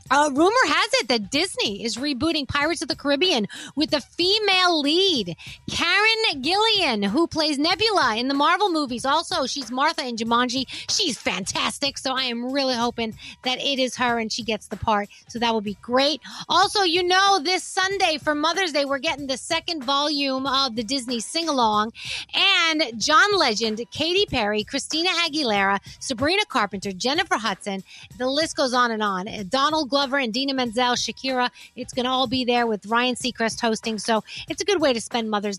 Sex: female